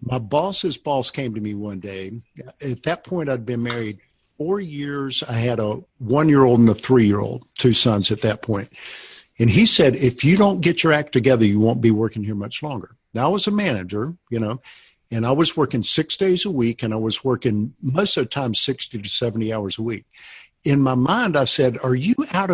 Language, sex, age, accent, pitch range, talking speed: English, male, 50-69, American, 115-175 Hz, 220 wpm